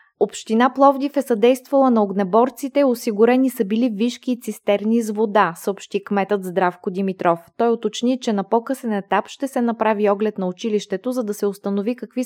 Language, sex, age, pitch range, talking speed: Bulgarian, female, 20-39, 195-240 Hz, 170 wpm